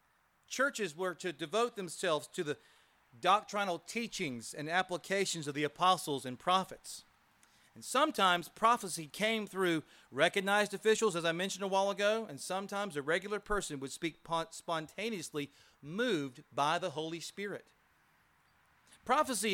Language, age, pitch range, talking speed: English, 40-59, 165-205 Hz, 130 wpm